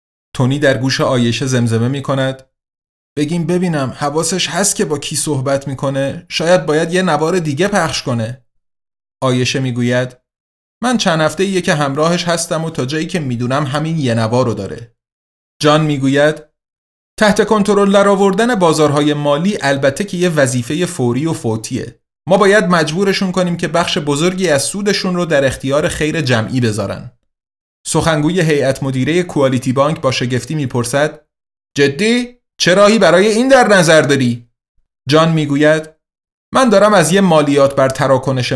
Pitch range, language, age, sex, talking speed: 125-170 Hz, Persian, 30-49, male, 145 wpm